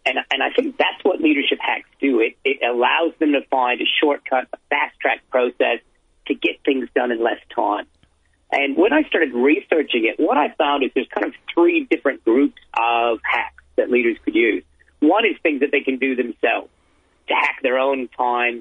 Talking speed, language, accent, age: 200 wpm, English, American, 50-69